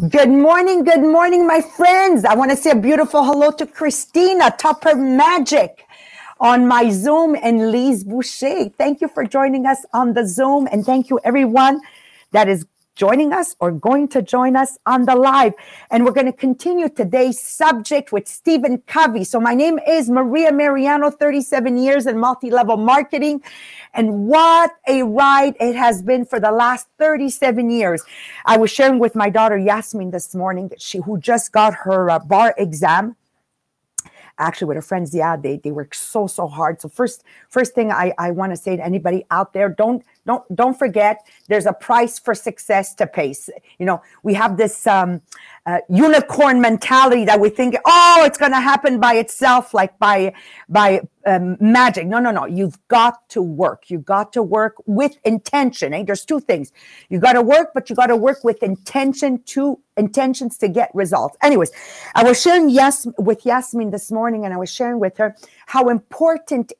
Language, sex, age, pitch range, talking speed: English, female, 40-59, 205-275 Hz, 185 wpm